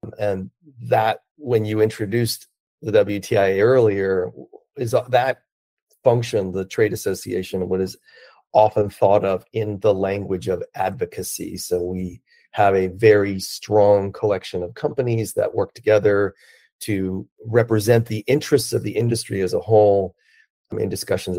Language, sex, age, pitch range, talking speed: English, male, 40-59, 100-145 Hz, 135 wpm